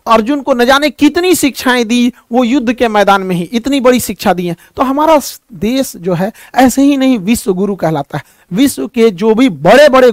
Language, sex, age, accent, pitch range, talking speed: Hindi, male, 50-69, native, 195-255 Hz, 215 wpm